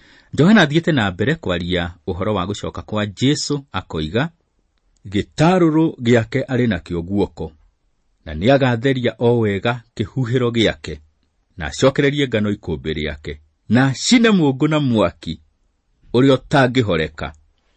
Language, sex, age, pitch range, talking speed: English, male, 40-59, 85-130 Hz, 120 wpm